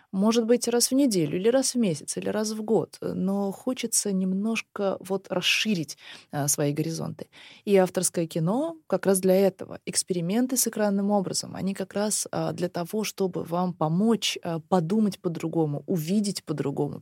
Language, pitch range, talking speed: Russian, 175-215 Hz, 150 wpm